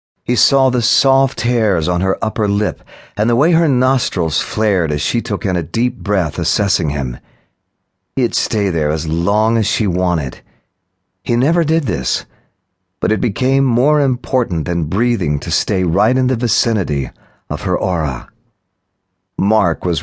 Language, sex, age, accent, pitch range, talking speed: English, male, 40-59, American, 85-120 Hz, 160 wpm